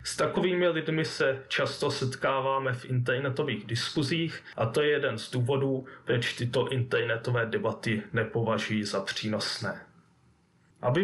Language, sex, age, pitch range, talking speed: Czech, male, 20-39, 120-160 Hz, 125 wpm